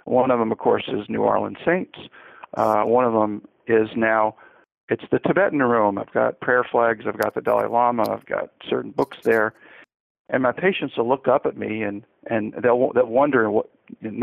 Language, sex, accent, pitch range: English, male, American, 120-175 Hz